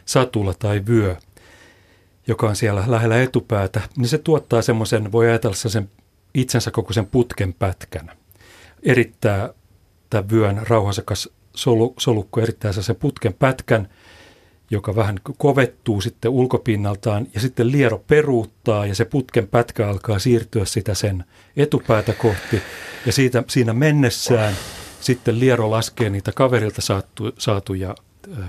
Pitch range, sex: 100-120 Hz, male